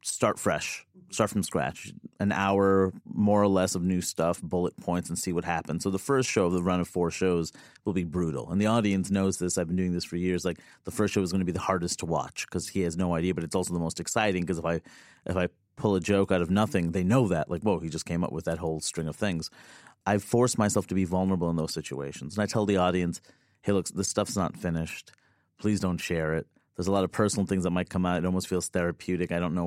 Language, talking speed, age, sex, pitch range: English, 270 wpm, 30-49, male, 85-100 Hz